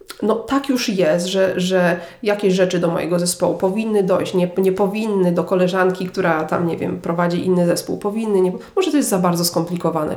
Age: 40-59